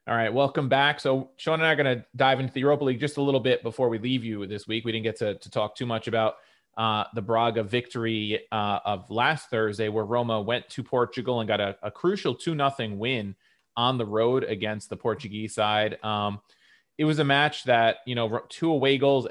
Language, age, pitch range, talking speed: English, 30-49, 105-130 Hz, 225 wpm